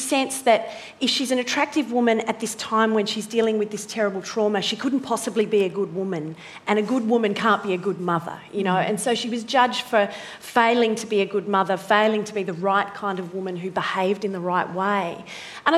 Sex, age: female, 30-49